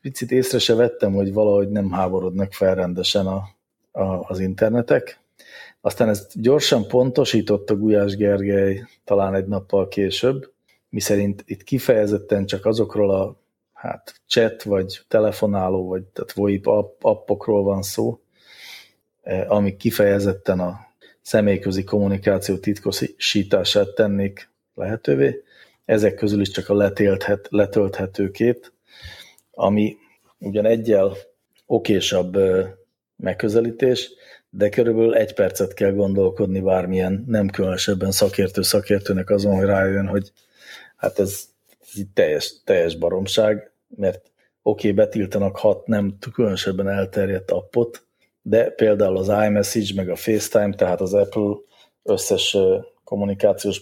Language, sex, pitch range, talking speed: English, male, 95-110 Hz, 115 wpm